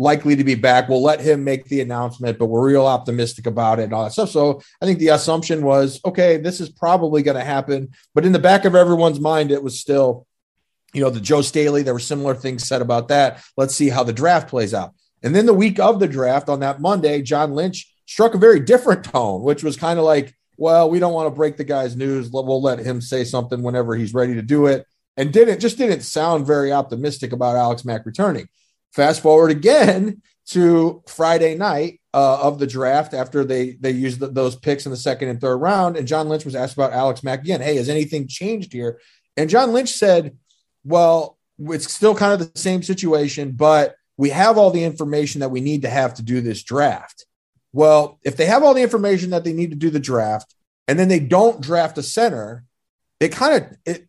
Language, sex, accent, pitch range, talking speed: English, male, American, 130-170 Hz, 225 wpm